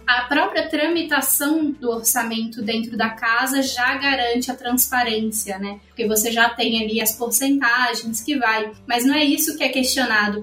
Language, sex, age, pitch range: Portuguese, female, 10-29, 225-270 Hz